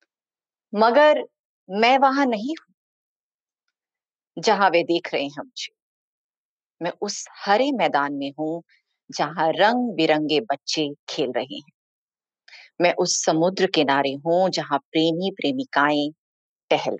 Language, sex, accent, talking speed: Hindi, female, native, 120 wpm